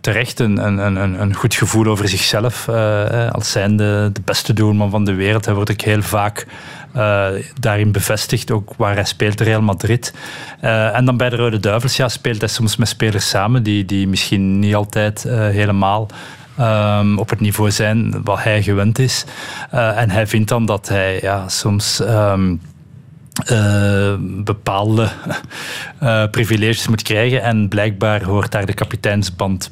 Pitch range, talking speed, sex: 100-115 Hz, 170 wpm, male